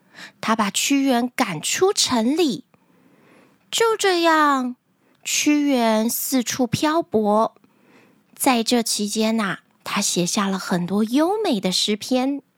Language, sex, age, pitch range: Chinese, female, 20-39, 220-330 Hz